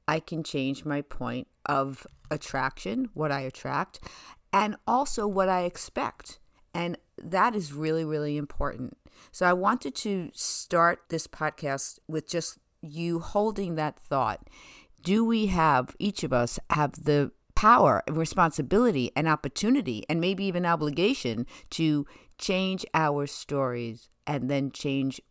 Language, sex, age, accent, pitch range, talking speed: English, female, 50-69, American, 135-170 Hz, 140 wpm